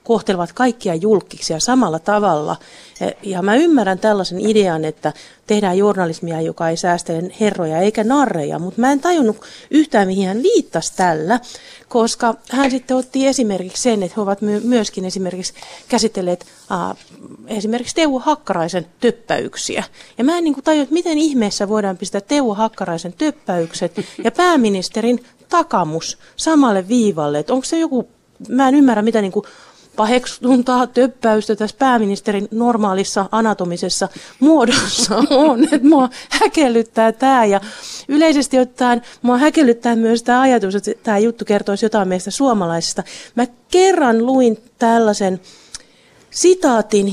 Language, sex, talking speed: Finnish, female, 130 wpm